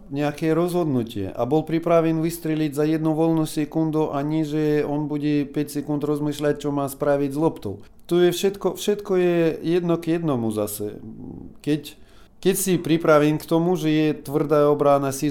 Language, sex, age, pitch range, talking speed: Slovak, male, 40-59, 140-165 Hz, 160 wpm